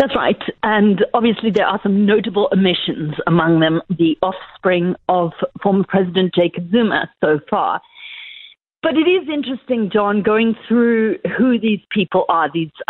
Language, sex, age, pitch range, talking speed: English, female, 50-69, 195-285 Hz, 150 wpm